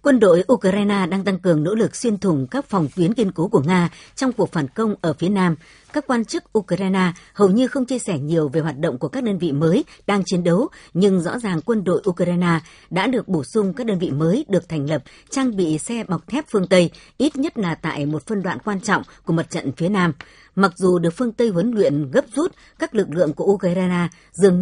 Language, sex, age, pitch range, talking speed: Vietnamese, male, 60-79, 170-220 Hz, 240 wpm